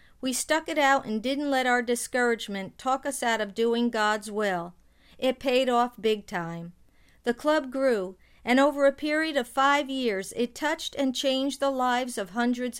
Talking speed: 185 wpm